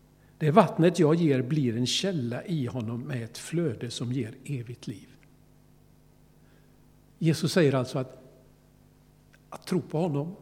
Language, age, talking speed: Swedish, 60-79, 140 wpm